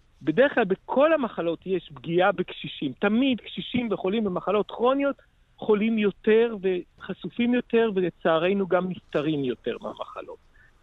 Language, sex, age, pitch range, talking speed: Hebrew, male, 50-69, 150-215 Hz, 115 wpm